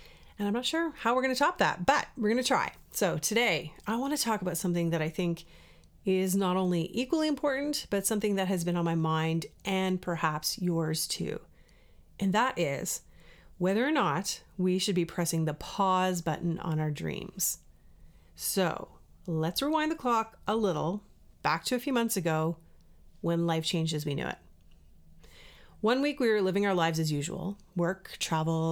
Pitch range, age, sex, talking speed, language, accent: 160-210 Hz, 30-49, female, 190 wpm, English, American